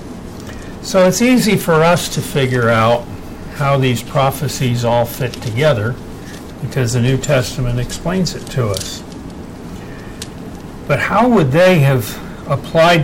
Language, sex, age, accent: English, male, 60-79, American